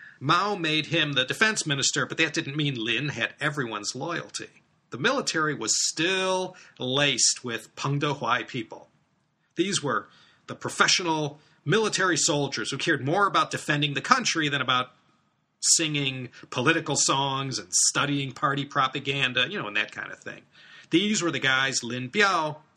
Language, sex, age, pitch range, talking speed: English, male, 40-59, 125-160 Hz, 150 wpm